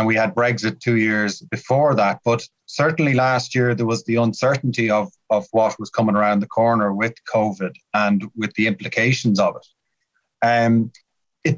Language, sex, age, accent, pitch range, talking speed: English, male, 30-49, Irish, 110-125 Hz, 175 wpm